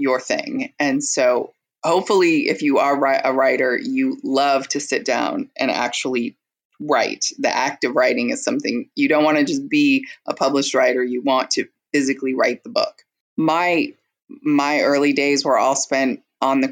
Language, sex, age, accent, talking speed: English, female, 20-39, American, 175 wpm